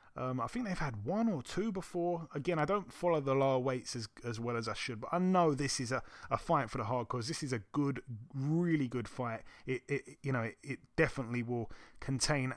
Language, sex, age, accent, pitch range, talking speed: English, male, 30-49, British, 130-180 Hz, 235 wpm